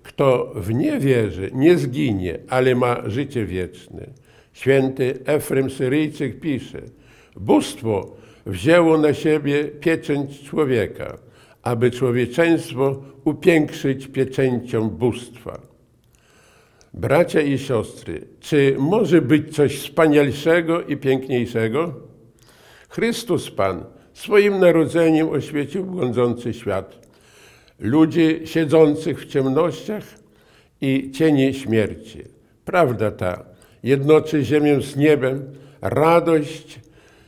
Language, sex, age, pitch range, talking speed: Polish, male, 60-79, 130-165 Hz, 90 wpm